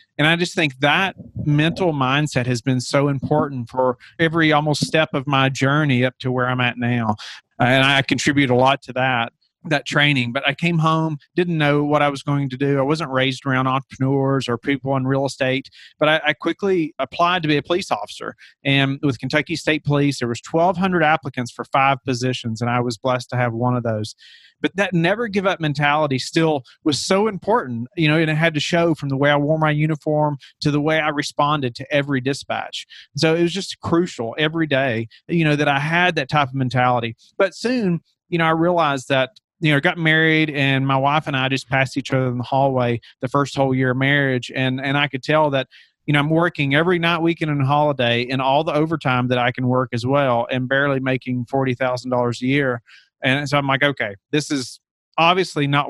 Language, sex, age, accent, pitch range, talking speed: English, male, 40-59, American, 130-155 Hz, 220 wpm